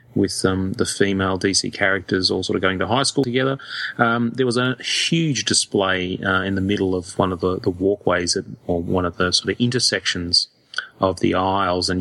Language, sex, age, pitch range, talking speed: English, male, 30-49, 95-120 Hz, 210 wpm